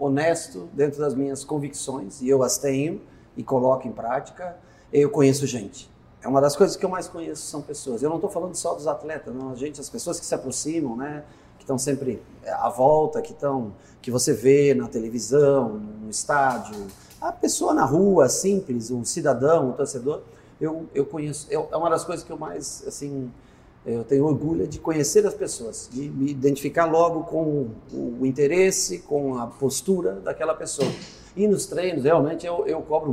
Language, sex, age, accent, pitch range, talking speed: Portuguese, male, 40-59, Brazilian, 135-170 Hz, 185 wpm